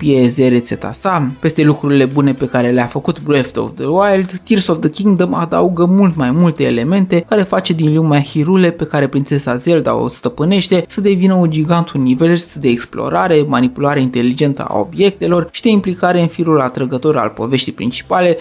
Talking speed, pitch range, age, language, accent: 175 wpm, 135-185 Hz, 20-39, Romanian, native